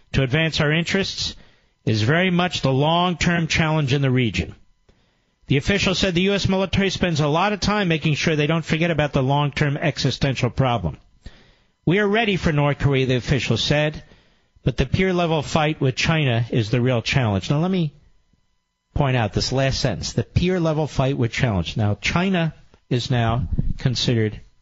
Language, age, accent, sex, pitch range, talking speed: English, 50-69, American, male, 110-150 Hz, 175 wpm